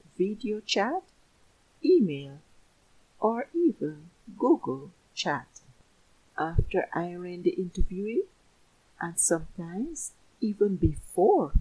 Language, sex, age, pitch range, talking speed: English, female, 60-79, 165-255 Hz, 80 wpm